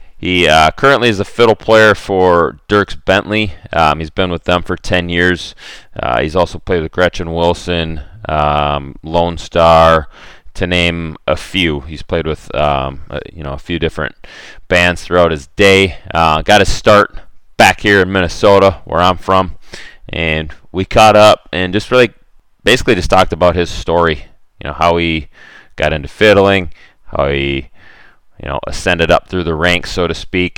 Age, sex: 30-49, male